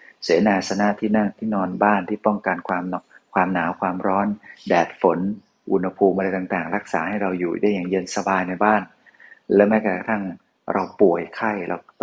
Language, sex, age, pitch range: Thai, male, 30-49, 95-115 Hz